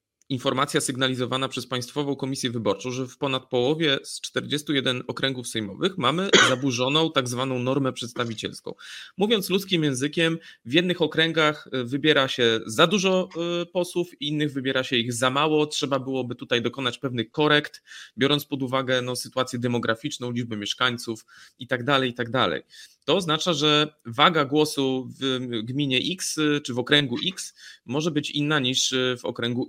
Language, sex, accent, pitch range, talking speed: Polish, male, native, 120-145 Hz, 145 wpm